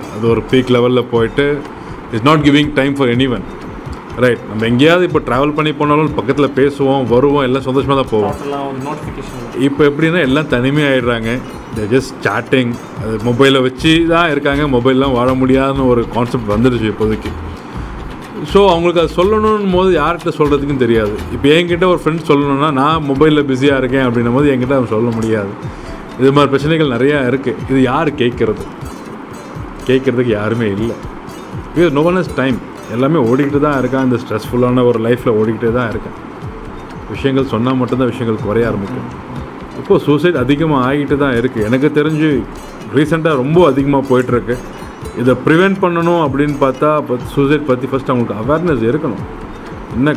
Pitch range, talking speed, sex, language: 120-145 Hz, 145 wpm, male, Tamil